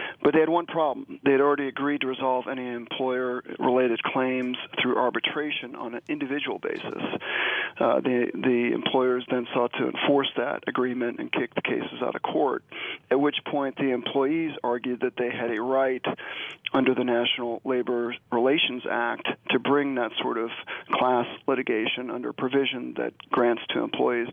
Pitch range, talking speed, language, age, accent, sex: 125-140 Hz, 165 wpm, English, 40-59, American, male